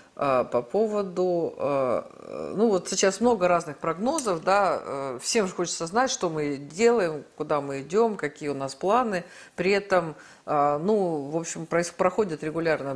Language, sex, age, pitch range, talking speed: Russian, female, 50-69, 145-195 Hz, 140 wpm